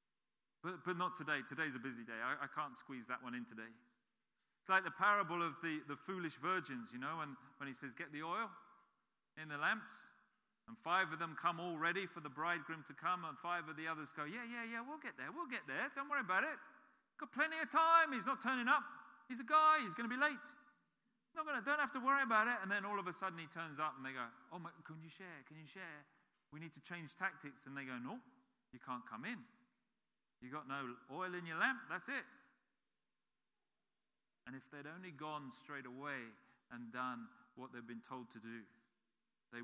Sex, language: male, English